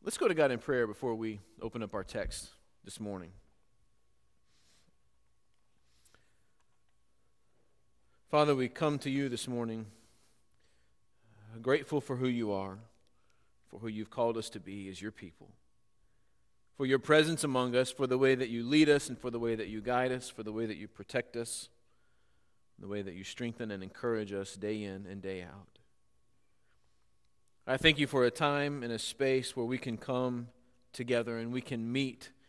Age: 40-59